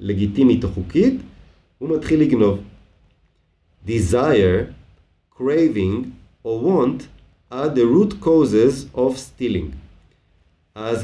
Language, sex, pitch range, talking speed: Hebrew, male, 85-125 Hz, 90 wpm